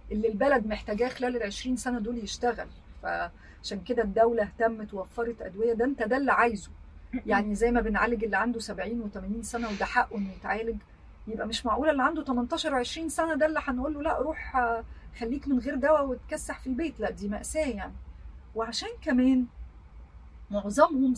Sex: female